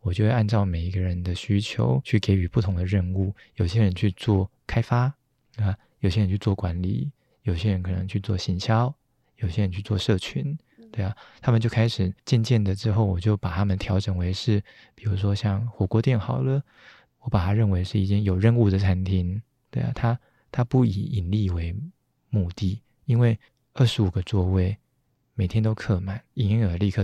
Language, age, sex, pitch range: Chinese, 20-39, male, 95-120 Hz